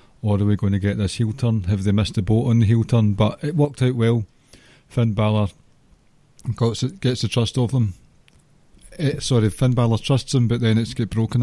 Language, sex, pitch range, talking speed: English, male, 110-130 Hz, 210 wpm